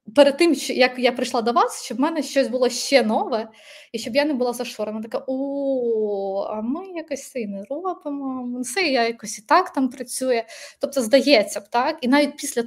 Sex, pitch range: female, 215-260 Hz